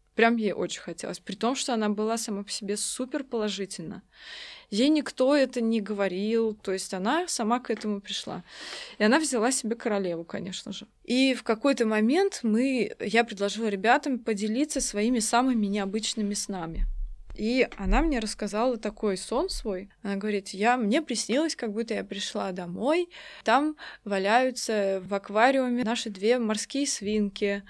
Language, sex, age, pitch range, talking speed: Russian, female, 20-39, 205-255 Hz, 150 wpm